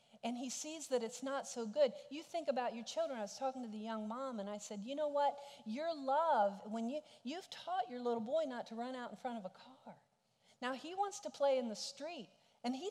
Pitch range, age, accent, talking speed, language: 200-280 Hz, 40-59, American, 250 wpm, English